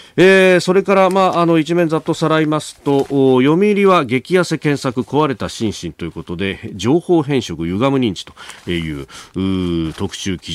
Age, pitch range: 40-59, 90-130 Hz